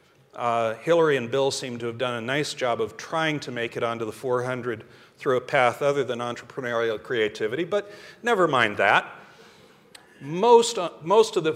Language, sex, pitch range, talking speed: English, male, 125-195 Hz, 180 wpm